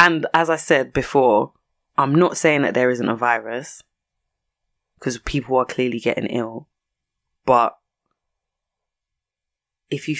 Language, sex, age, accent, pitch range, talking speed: English, female, 20-39, British, 120-175 Hz, 130 wpm